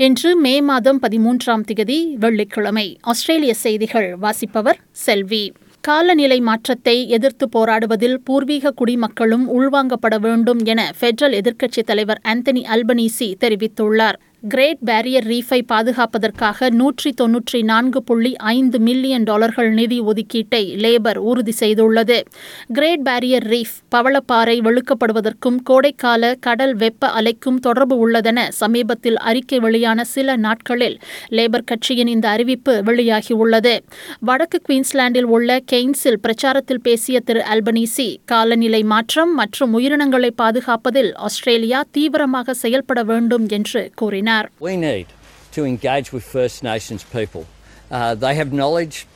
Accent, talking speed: native, 105 wpm